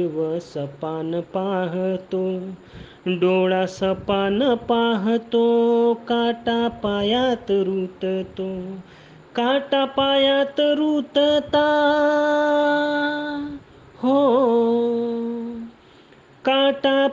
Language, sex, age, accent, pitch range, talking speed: Marathi, male, 30-49, native, 185-230 Hz, 40 wpm